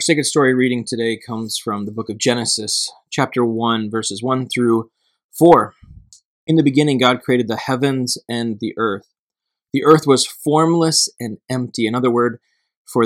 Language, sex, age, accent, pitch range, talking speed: English, male, 20-39, American, 110-130 Hz, 170 wpm